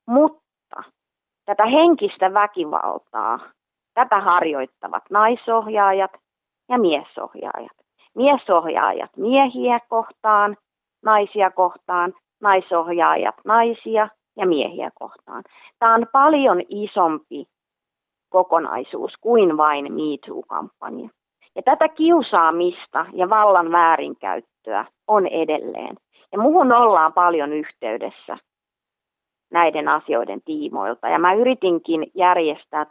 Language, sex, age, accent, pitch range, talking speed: Finnish, female, 30-49, native, 155-215 Hz, 80 wpm